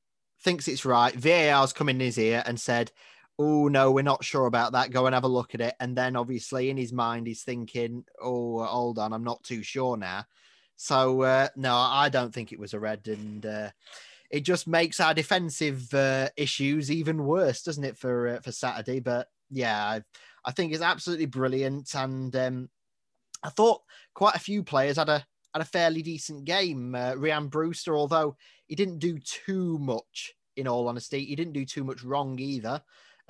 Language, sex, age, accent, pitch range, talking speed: English, male, 20-39, British, 120-140 Hz, 200 wpm